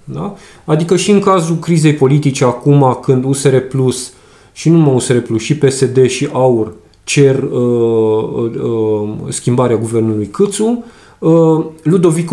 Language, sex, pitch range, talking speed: Romanian, male, 125-165 Hz, 140 wpm